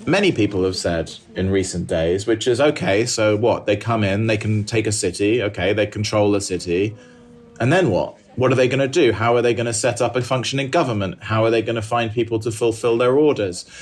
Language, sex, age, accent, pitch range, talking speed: English, male, 30-49, British, 100-120 Hz, 240 wpm